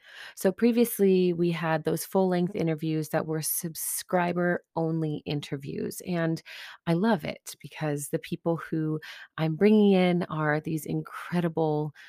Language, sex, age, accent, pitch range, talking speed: English, female, 30-49, American, 155-195 Hz, 125 wpm